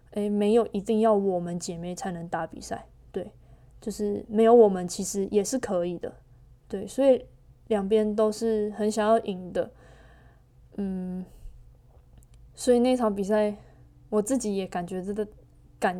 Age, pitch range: 20-39, 185-220 Hz